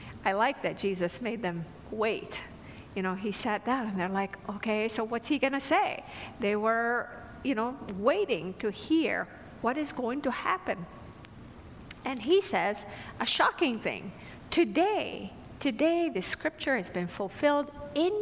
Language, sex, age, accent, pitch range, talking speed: English, female, 50-69, American, 210-335 Hz, 155 wpm